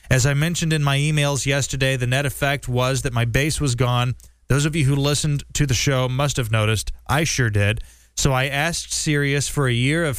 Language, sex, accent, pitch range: English, male, American, 125-150 Hz